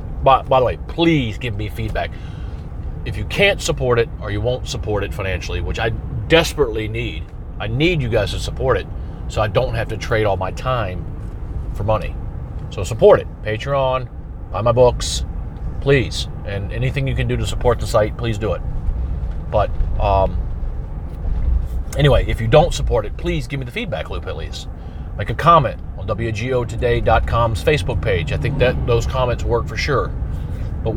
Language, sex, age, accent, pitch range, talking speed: English, male, 40-59, American, 85-125 Hz, 180 wpm